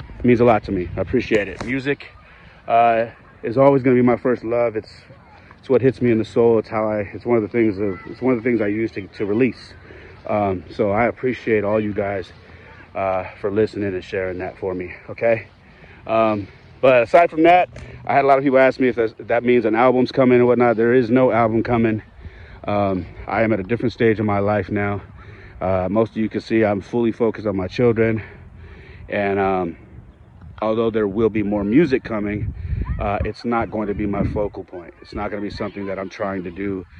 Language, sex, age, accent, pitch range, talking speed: English, male, 30-49, American, 95-115 Hz, 225 wpm